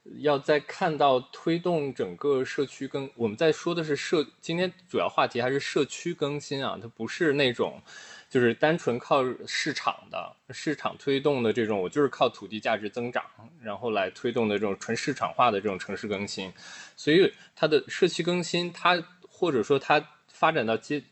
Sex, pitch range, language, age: male, 125-170 Hz, Chinese, 20-39